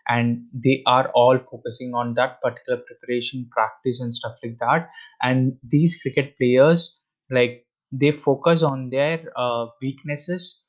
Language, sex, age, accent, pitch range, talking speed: English, male, 20-39, Indian, 120-130 Hz, 140 wpm